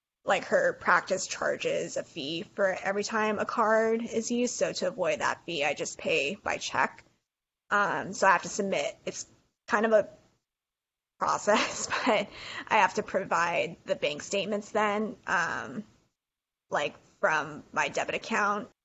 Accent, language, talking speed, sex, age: American, English, 155 wpm, female, 20-39